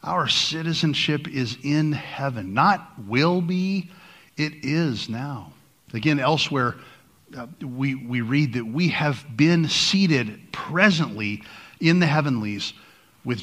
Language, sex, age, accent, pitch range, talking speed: English, male, 50-69, American, 125-160 Hz, 120 wpm